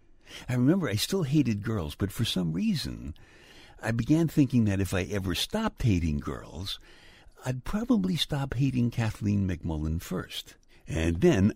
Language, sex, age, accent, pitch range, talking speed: English, male, 60-79, American, 80-130 Hz, 150 wpm